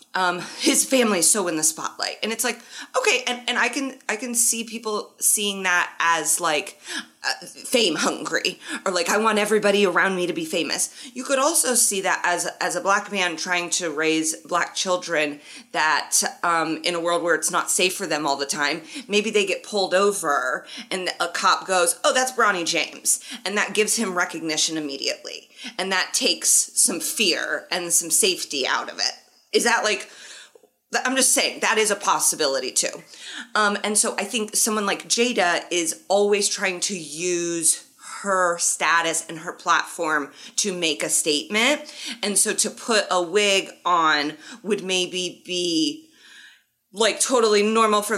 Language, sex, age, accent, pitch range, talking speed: English, female, 30-49, American, 170-220 Hz, 180 wpm